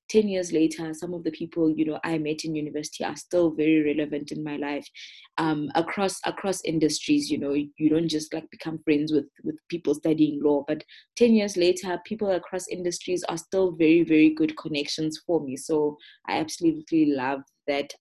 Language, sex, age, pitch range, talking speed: English, female, 20-39, 150-175 Hz, 195 wpm